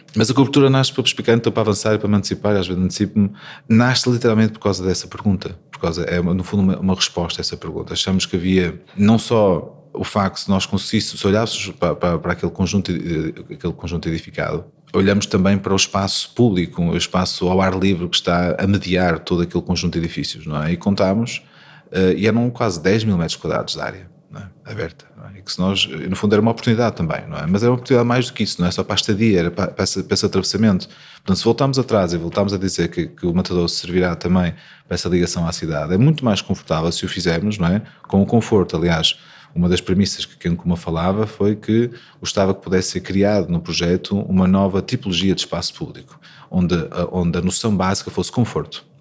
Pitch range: 90-110 Hz